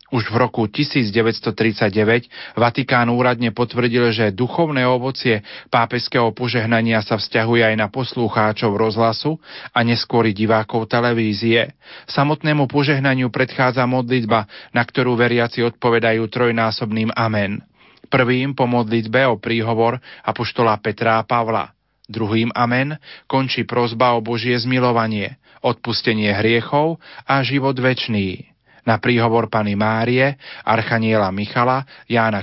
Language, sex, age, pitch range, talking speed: Slovak, male, 40-59, 115-130 Hz, 115 wpm